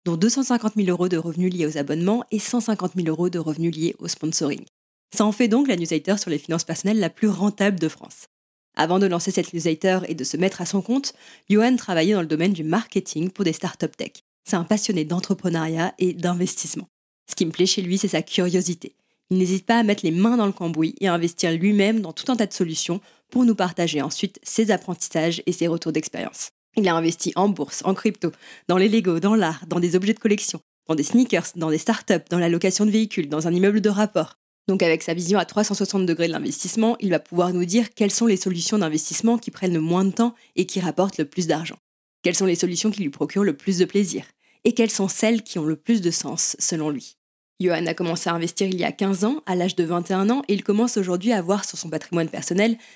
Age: 20-39